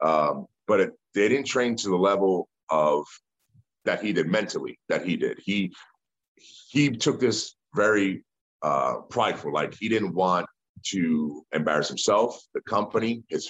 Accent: American